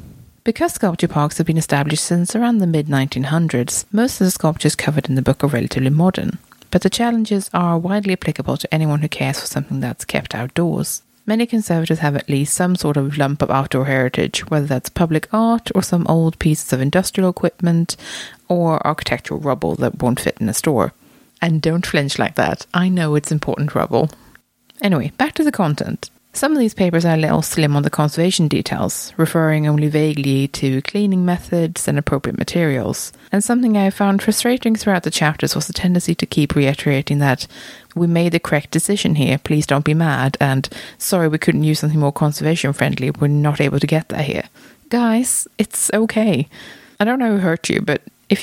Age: 30-49